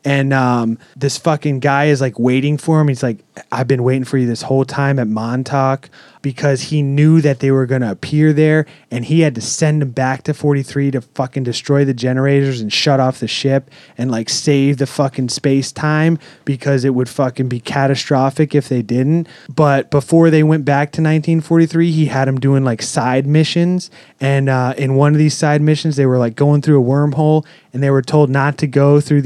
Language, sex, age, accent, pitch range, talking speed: English, male, 30-49, American, 135-160 Hz, 210 wpm